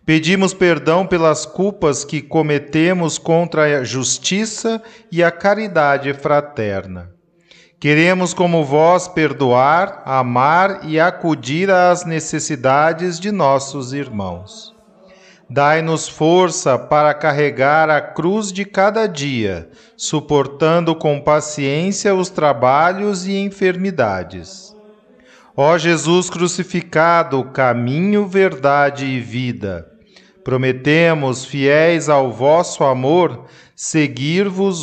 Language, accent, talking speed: Portuguese, Brazilian, 95 wpm